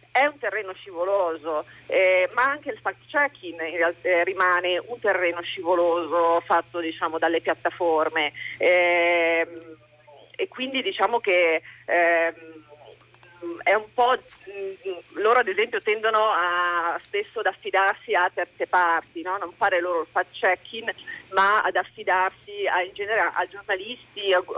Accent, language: native, Italian